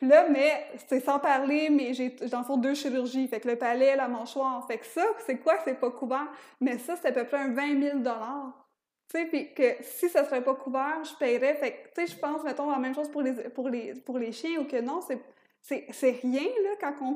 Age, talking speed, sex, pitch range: 20-39, 250 wpm, female, 245-285 Hz